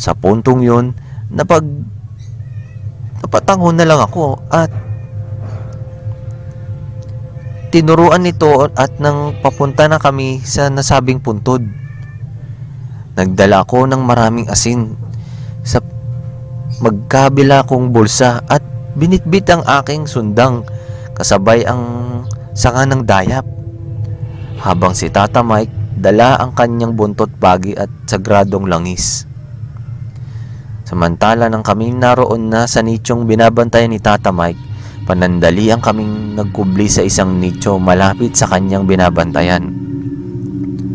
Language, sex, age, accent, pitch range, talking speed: Filipino, male, 20-39, native, 105-130 Hz, 105 wpm